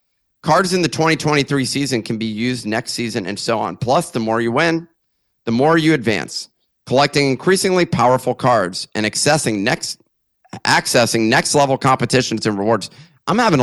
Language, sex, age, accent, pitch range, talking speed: English, male, 30-49, American, 115-150 Hz, 165 wpm